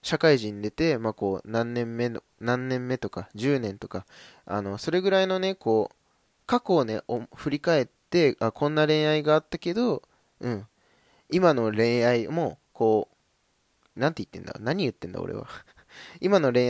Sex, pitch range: male, 115-165 Hz